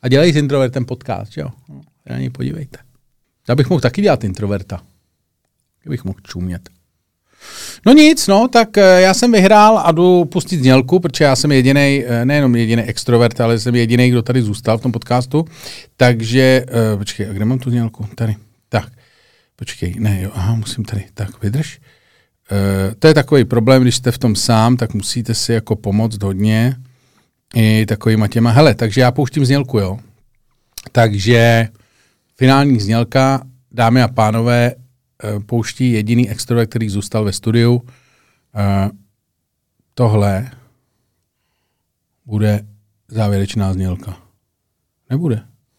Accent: native